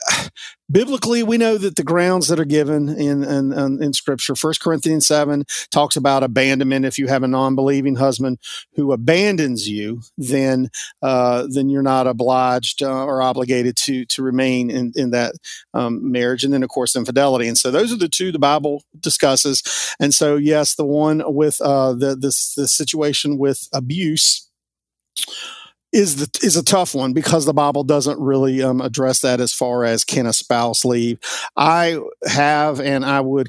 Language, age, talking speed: English, 50-69, 175 wpm